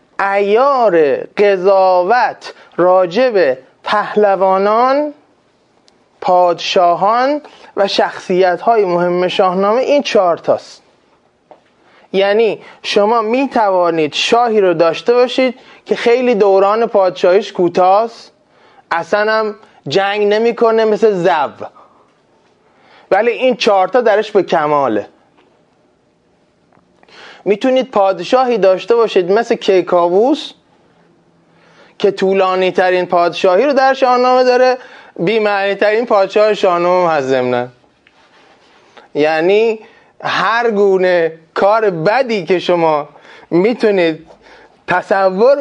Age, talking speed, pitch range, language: 30-49, 90 wpm, 180-230 Hz, Persian